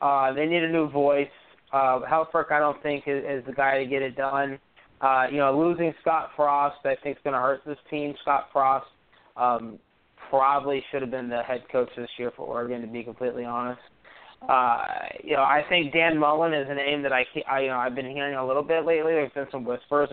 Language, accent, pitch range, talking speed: English, American, 135-165 Hz, 220 wpm